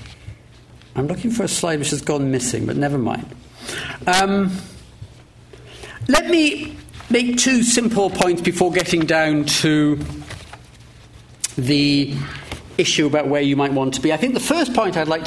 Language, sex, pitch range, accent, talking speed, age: English, male, 150-210 Hz, British, 155 wpm, 50-69